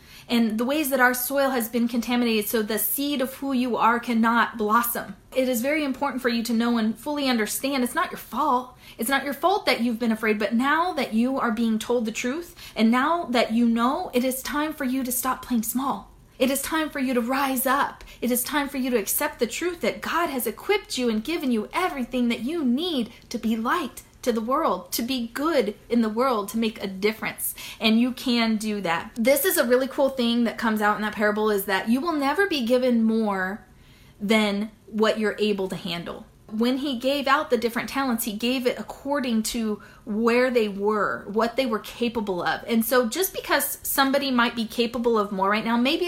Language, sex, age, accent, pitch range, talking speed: English, female, 30-49, American, 220-265 Hz, 225 wpm